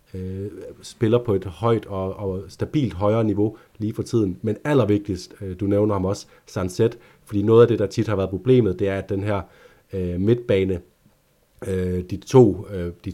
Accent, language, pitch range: native, Danish, 95-110 Hz